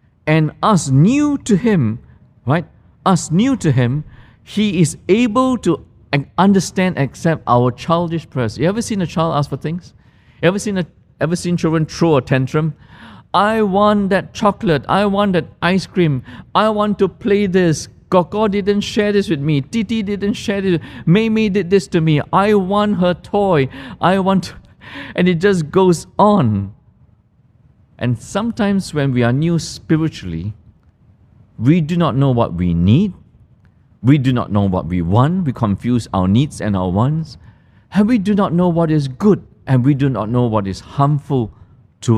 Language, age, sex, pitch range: English, 50-69, male, 120-190 Hz